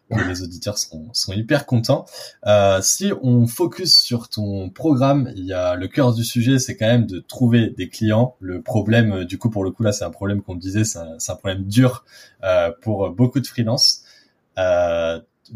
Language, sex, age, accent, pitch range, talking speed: French, male, 20-39, French, 95-120 Hz, 210 wpm